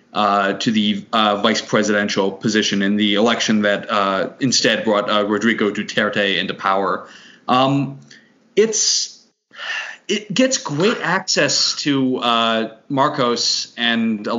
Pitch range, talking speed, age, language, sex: 110-145 Hz, 125 wpm, 20-39, English, male